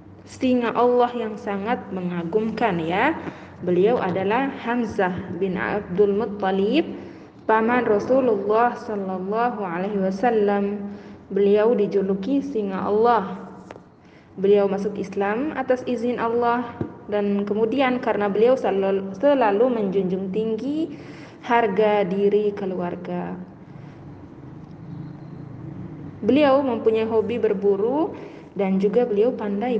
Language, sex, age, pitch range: Indonesian, female, 20-39, 195-240 Hz